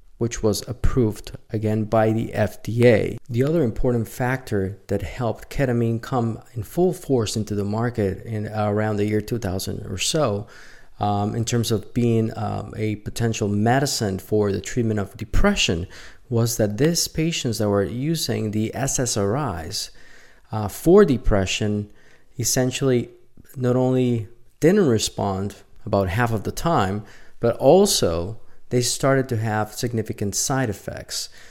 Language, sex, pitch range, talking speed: English, male, 105-125 Hz, 140 wpm